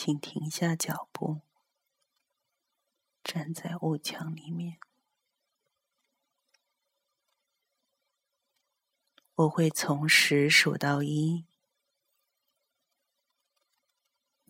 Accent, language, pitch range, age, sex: native, Chinese, 150-170 Hz, 40-59, female